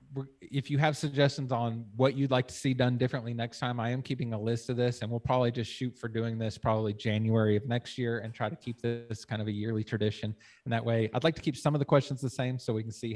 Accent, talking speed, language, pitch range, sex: American, 280 wpm, English, 110-135 Hz, male